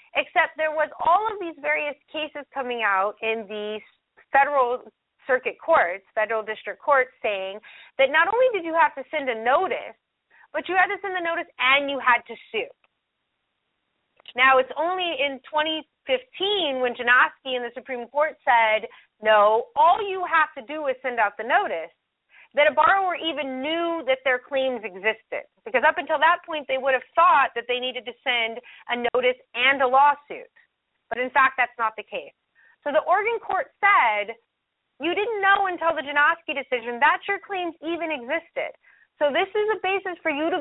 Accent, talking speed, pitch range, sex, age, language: American, 185 wpm, 245-330 Hz, female, 30-49, English